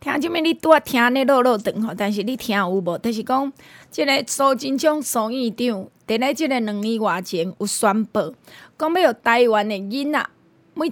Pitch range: 215-280 Hz